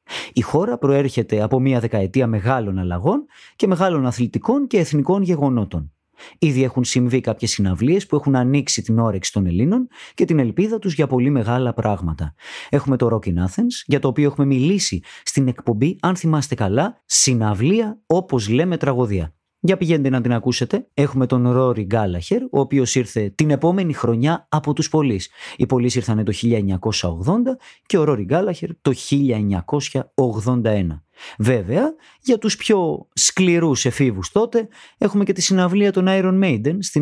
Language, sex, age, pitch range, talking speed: Greek, male, 30-49, 120-175 Hz, 155 wpm